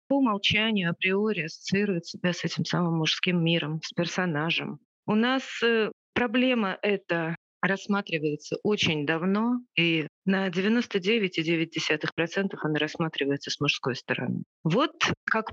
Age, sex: 30-49, female